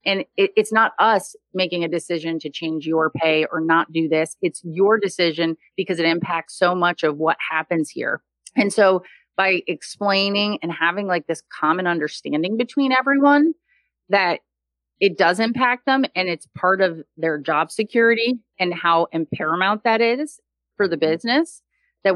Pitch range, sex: 160-200 Hz, female